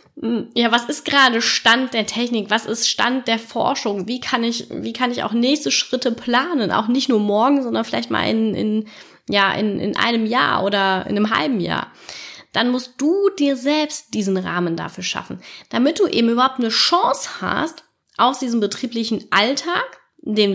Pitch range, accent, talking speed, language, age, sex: 195-255 Hz, German, 180 wpm, German, 20-39, female